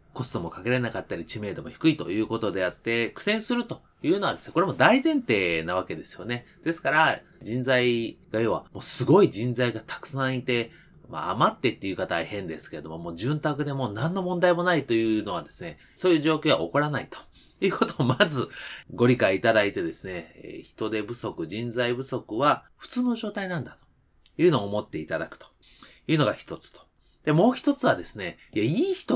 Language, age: Japanese, 30-49